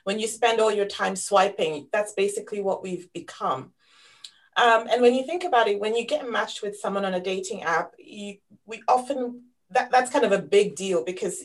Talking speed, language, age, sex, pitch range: 210 wpm, English, 30-49, female, 195-230 Hz